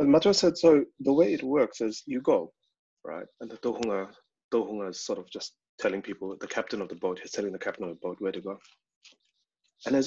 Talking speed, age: 225 wpm, 30-49